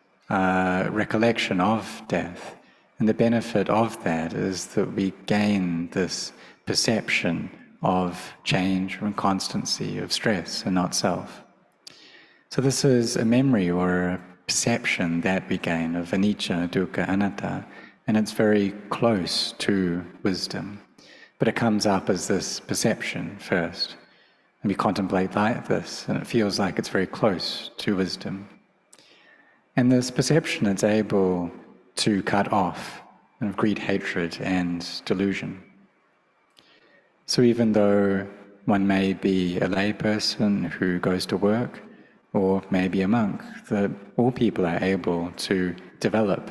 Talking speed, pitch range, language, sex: 130 wpm, 90-110 Hz, English, male